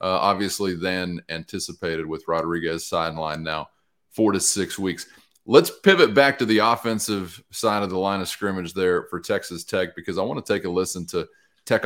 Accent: American